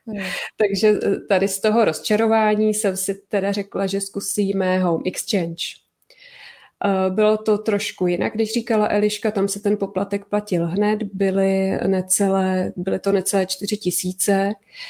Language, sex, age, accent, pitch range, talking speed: Czech, female, 20-39, native, 190-215 Hz, 130 wpm